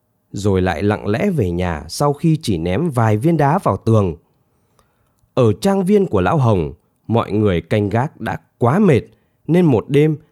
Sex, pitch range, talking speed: male, 105-155 Hz, 180 wpm